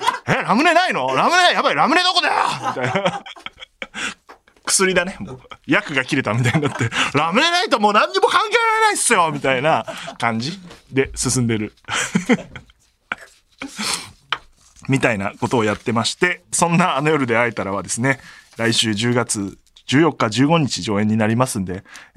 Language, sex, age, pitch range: Japanese, male, 20-39, 105-165 Hz